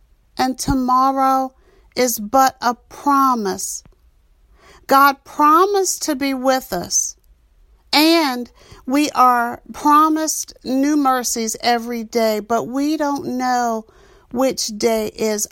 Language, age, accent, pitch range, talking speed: English, 50-69, American, 195-260 Hz, 105 wpm